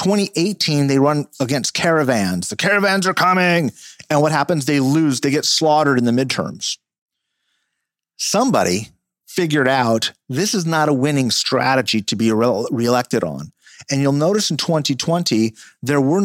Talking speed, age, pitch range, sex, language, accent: 150 wpm, 40-59, 115-150 Hz, male, English, American